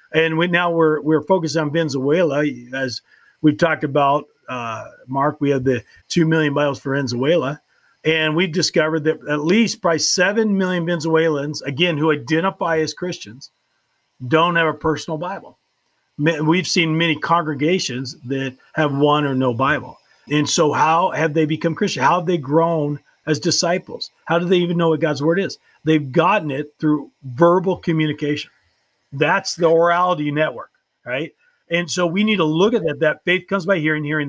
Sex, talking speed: male, 175 wpm